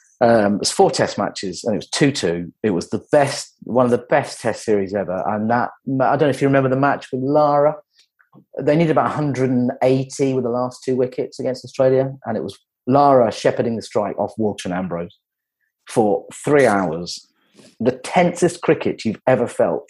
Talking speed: 195 wpm